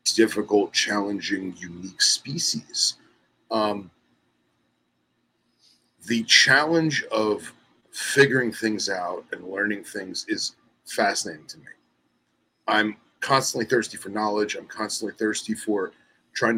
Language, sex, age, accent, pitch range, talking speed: English, male, 30-49, American, 100-120 Hz, 100 wpm